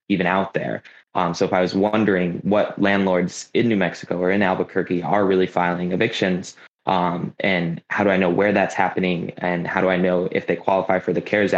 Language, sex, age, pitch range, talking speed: English, male, 20-39, 90-100 Hz, 215 wpm